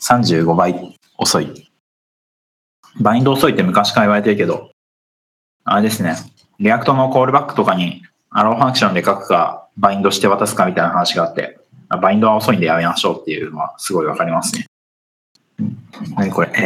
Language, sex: Japanese, male